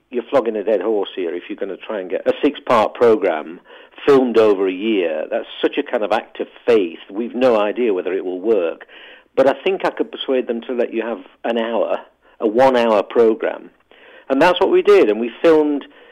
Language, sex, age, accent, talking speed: English, male, 50-69, British, 220 wpm